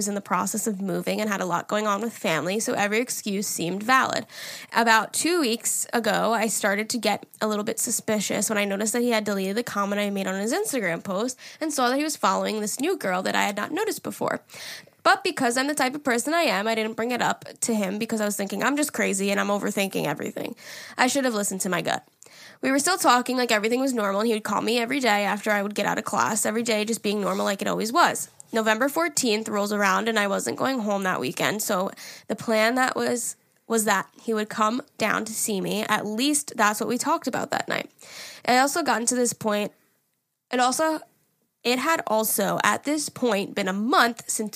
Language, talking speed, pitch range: English, 240 wpm, 205-245 Hz